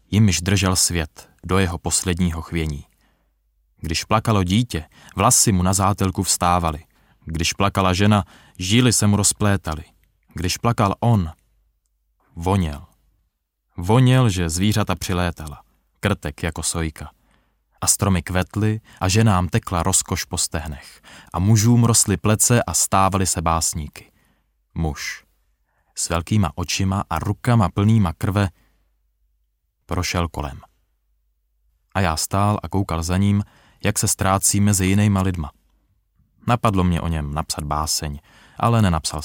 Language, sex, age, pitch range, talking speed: Czech, male, 20-39, 80-100 Hz, 125 wpm